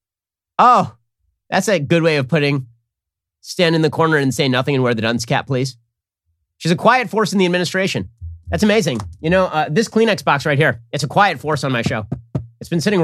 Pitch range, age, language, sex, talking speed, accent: 115-190 Hz, 30-49, English, male, 215 wpm, American